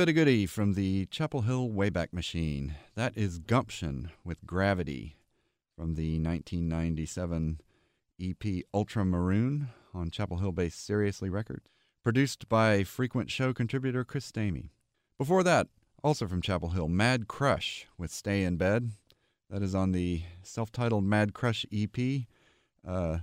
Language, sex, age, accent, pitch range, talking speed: English, male, 40-59, American, 90-120 Hz, 130 wpm